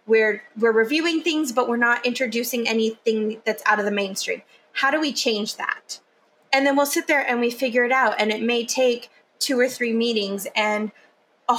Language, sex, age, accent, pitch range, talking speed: English, female, 20-39, American, 215-265 Hz, 200 wpm